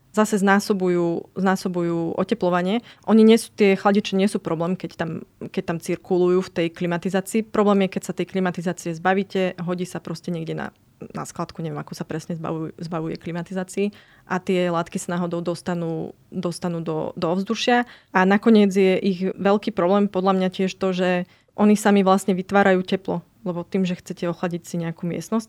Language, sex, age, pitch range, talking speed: Slovak, female, 20-39, 175-195 Hz, 175 wpm